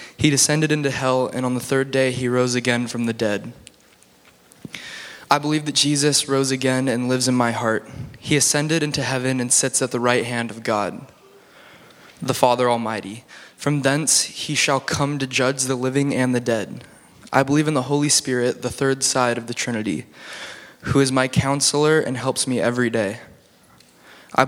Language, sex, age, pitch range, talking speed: English, male, 20-39, 120-140 Hz, 185 wpm